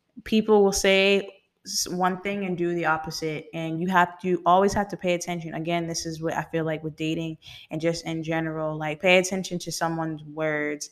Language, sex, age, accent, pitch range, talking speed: English, female, 10-29, American, 160-190 Hz, 205 wpm